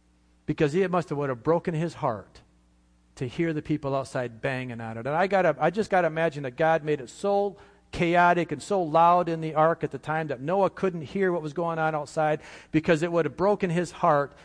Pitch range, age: 120-175 Hz, 50-69